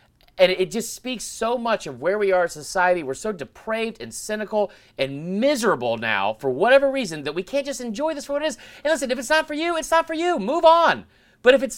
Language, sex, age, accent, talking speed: English, male, 40-59, American, 250 wpm